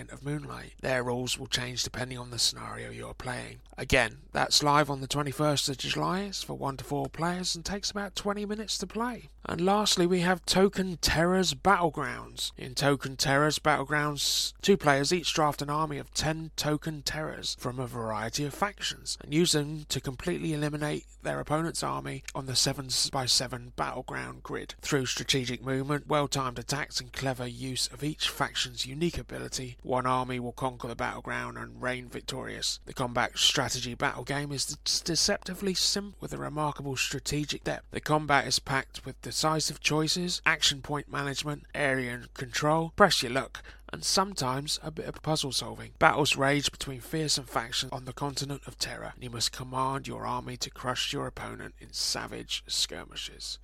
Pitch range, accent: 125-155 Hz, British